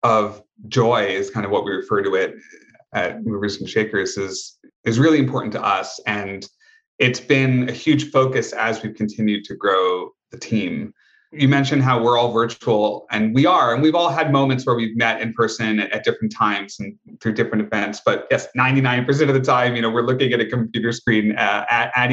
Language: English